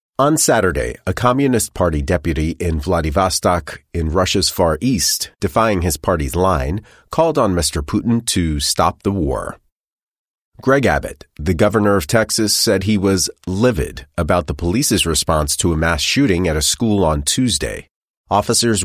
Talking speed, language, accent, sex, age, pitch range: 155 wpm, English, American, male, 30-49, 80-105 Hz